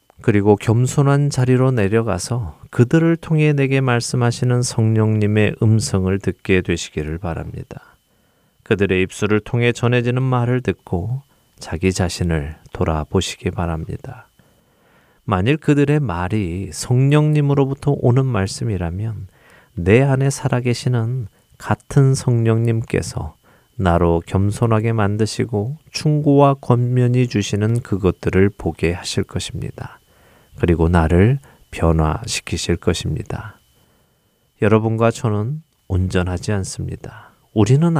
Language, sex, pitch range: Korean, male, 95-125 Hz